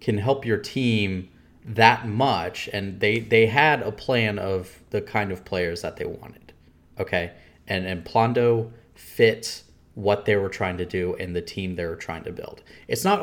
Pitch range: 90-110 Hz